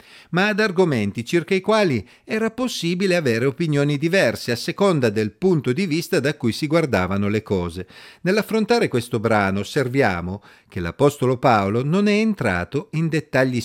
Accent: native